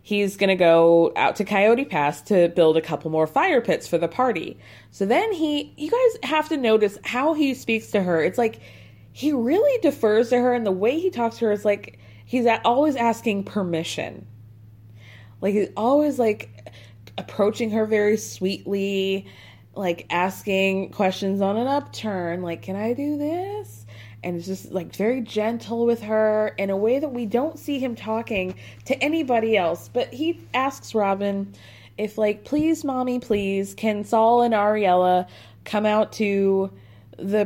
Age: 20-39